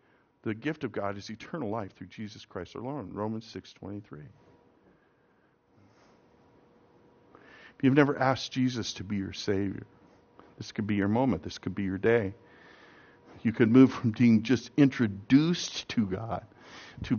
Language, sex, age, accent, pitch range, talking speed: English, male, 50-69, American, 100-135 Hz, 155 wpm